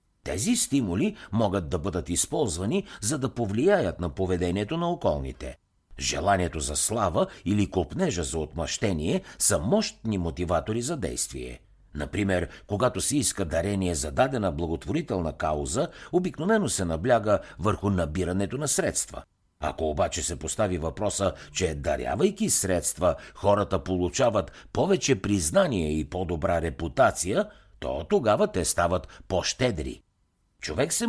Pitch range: 85-125 Hz